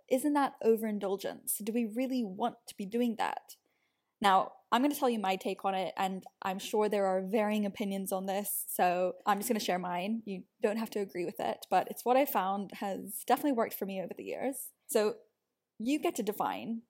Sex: female